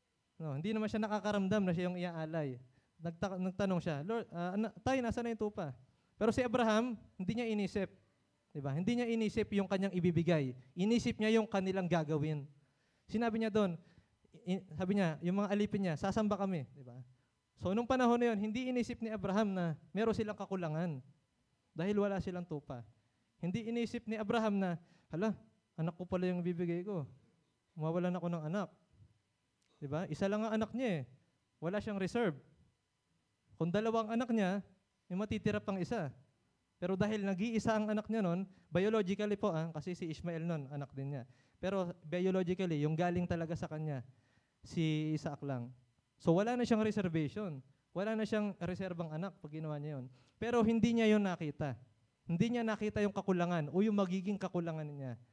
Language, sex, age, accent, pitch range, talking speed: English, male, 20-39, Filipino, 155-210 Hz, 170 wpm